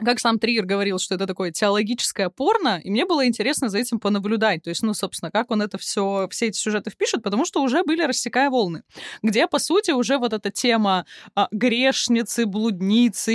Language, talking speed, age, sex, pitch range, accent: Russian, 200 wpm, 20-39, female, 200-255 Hz, native